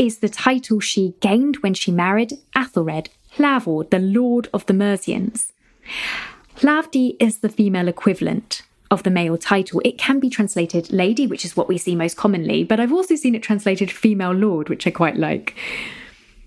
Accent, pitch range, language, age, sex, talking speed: British, 185-255 Hz, English, 20-39, female, 175 wpm